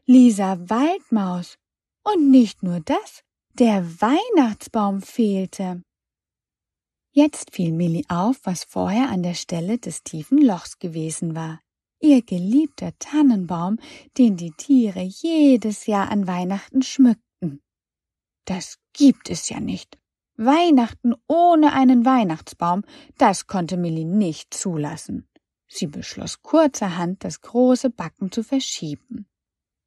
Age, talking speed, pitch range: 30-49, 115 wpm, 175-260 Hz